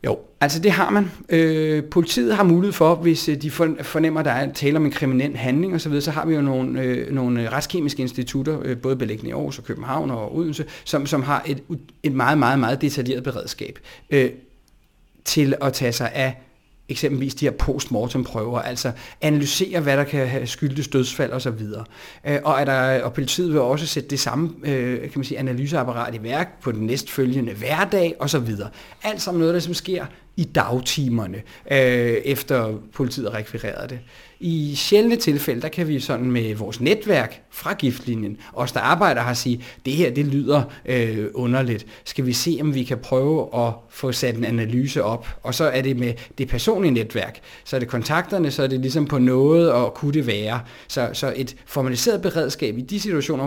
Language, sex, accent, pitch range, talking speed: Danish, male, native, 125-155 Hz, 190 wpm